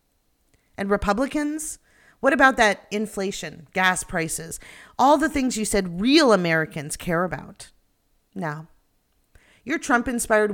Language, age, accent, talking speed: English, 40-59, American, 115 wpm